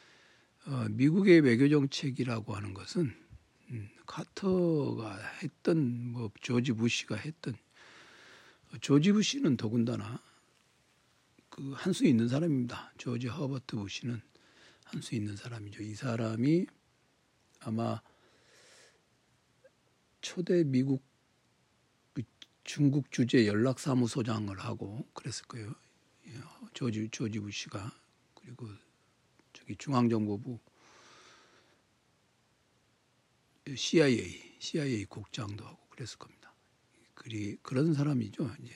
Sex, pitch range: male, 115-140 Hz